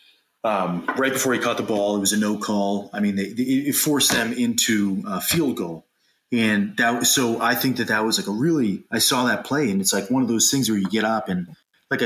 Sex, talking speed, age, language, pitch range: male, 260 wpm, 30-49, English, 105-130 Hz